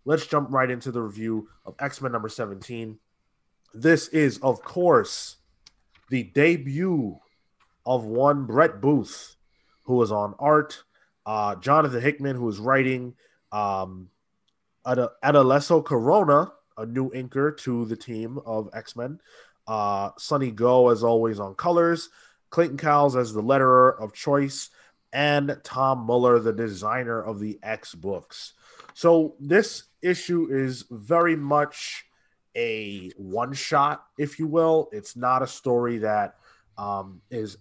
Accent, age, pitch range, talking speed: American, 20-39, 105-140 Hz, 130 wpm